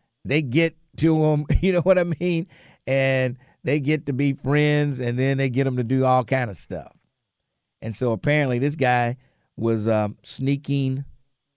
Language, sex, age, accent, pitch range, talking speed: English, male, 50-69, American, 115-150 Hz, 175 wpm